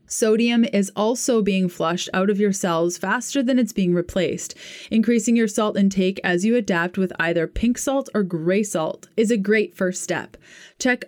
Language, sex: English, female